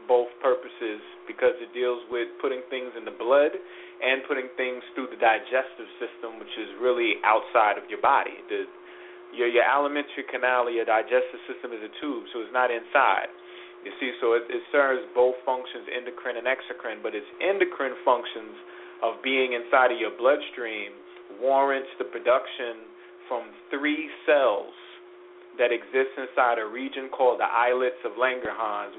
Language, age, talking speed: English, 30-49, 160 wpm